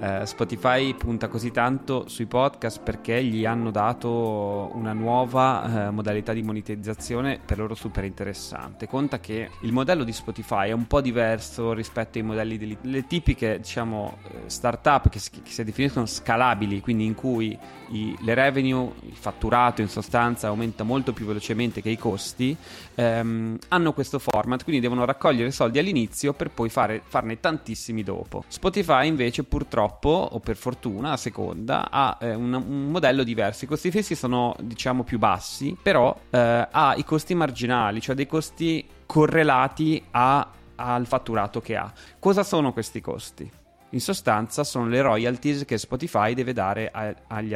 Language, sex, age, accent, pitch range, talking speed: Italian, male, 20-39, native, 110-135 Hz, 160 wpm